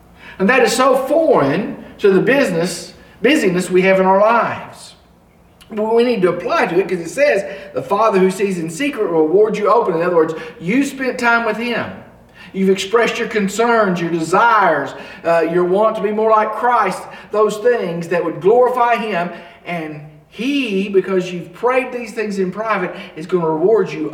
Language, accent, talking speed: English, American, 190 wpm